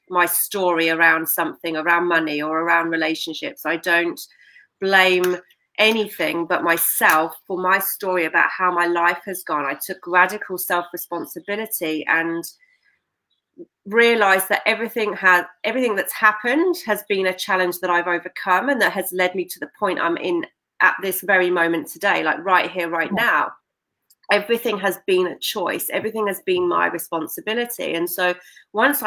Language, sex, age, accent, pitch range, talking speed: English, female, 30-49, British, 170-205 Hz, 155 wpm